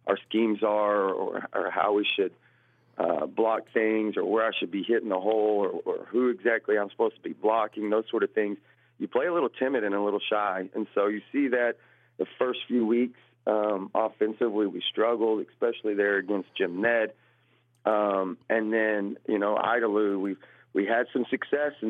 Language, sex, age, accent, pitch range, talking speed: English, male, 40-59, American, 100-115 Hz, 195 wpm